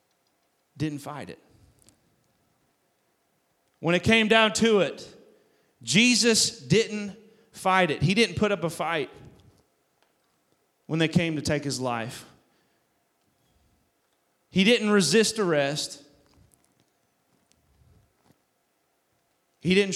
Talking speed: 95 wpm